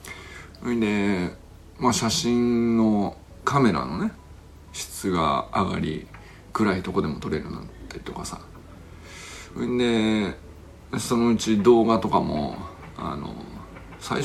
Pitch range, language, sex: 85-110 Hz, Japanese, male